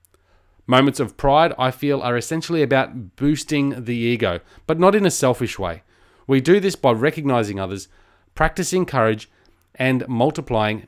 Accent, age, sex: Australian, 30-49, male